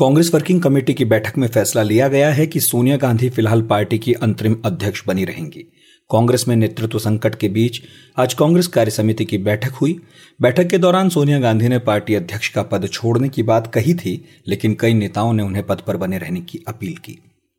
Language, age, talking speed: Hindi, 40-59, 200 wpm